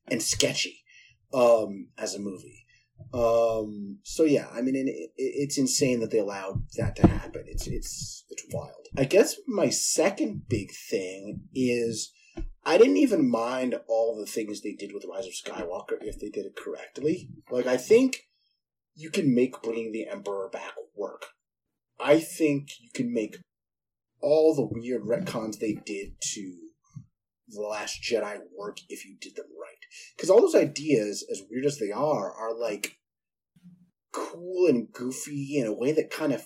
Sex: male